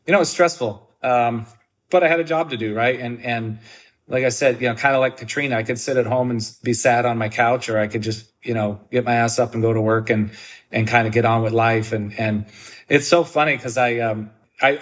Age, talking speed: 30-49, 265 wpm